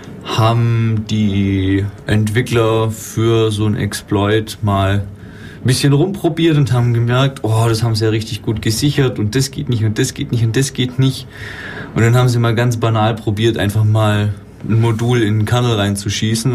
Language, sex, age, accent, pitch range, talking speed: German, male, 20-39, German, 100-120 Hz, 180 wpm